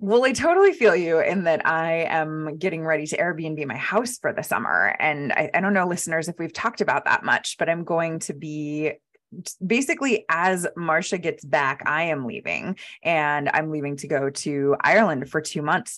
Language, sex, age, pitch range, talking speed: English, female, 20-39, 160-220 Hz, 200 wpm